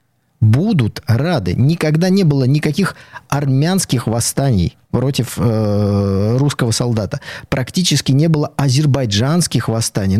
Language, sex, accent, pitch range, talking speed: Russian, male, native, 115-155 Hz, 100 wpm